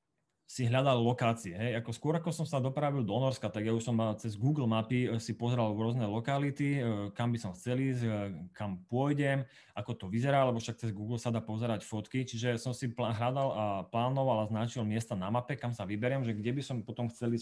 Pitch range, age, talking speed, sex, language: 115-140 Hz, 30-49, 215 wpm, male, Slovak